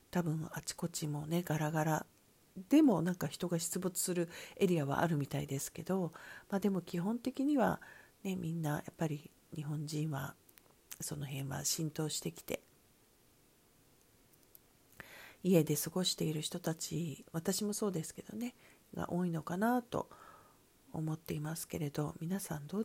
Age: 40-59